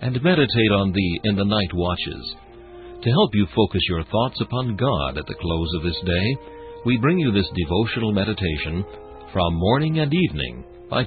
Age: 60-79